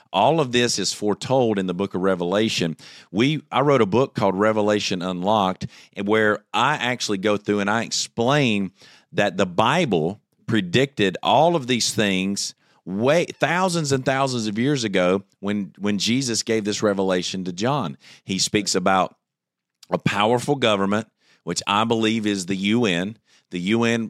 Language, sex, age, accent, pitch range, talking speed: English, male, 40-59, American, 100-125 Hz, 155 wpm